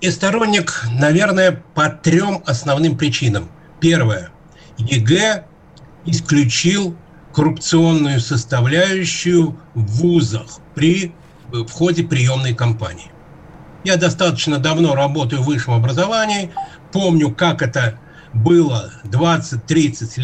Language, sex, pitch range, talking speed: Russian, male, 135-170 Hz, 90 wpm